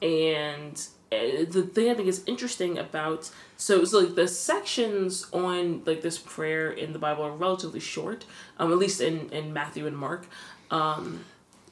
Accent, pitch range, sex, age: American, 155-185 Hz, female, 20-39